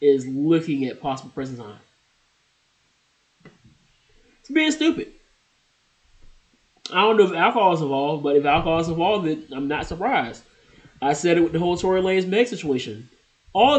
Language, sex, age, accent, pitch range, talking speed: English, male, 20-39, American, 120-165 Hz, 155 wpm